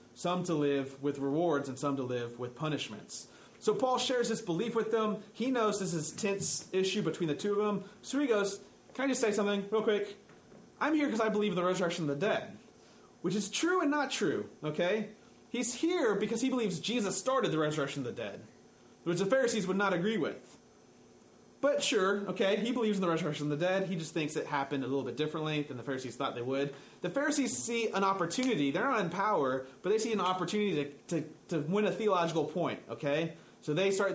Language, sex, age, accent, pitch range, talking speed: English, male, 30-49, American, 140-215 Hz, 225 wpm